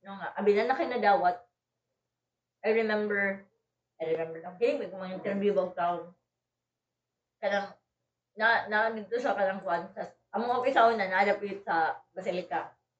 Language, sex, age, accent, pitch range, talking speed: Filipino, female, 20-39, native, 180-235 Hz, 155 wpm